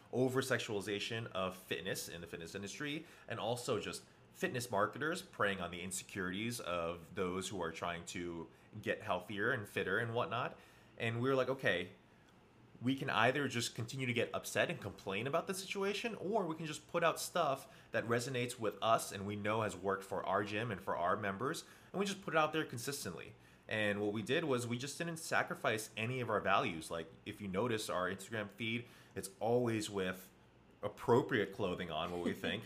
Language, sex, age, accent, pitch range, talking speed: English, male, 30-49, American, 95-130 Hz, 195 wpm